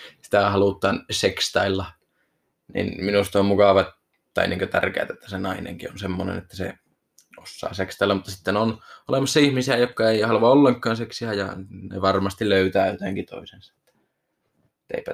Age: 20-39